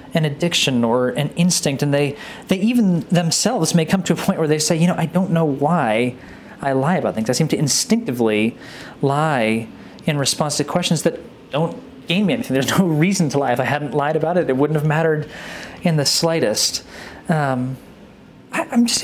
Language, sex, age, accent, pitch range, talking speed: English, male, 30-49, American, 140-175 Hz, 200 wpm